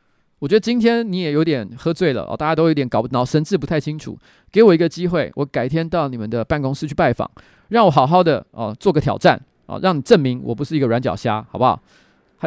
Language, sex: Chinese, male